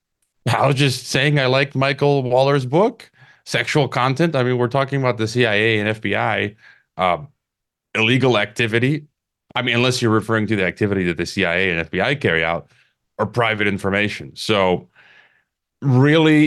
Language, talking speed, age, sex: English, 155 wpm, 30-49, male